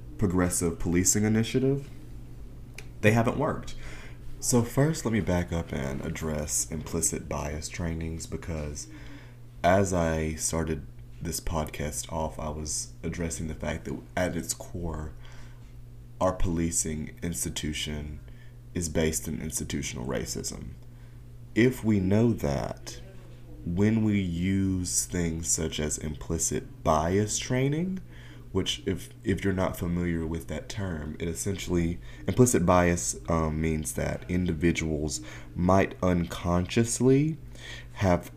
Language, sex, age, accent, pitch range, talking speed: English, male, 30-49, American, 80-115 Hz, 115 wpm